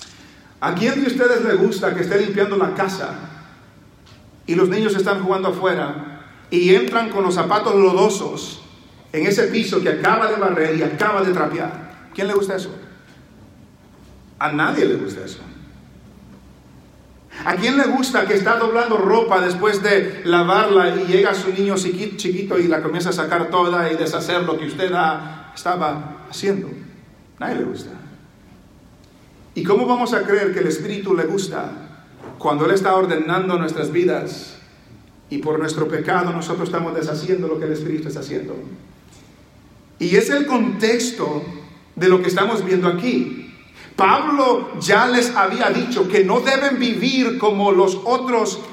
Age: 40-59